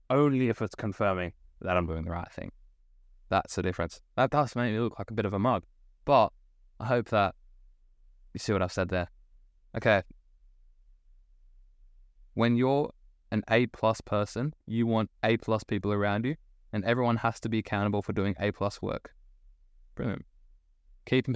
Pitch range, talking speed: 90-120 Hz, 165 wpm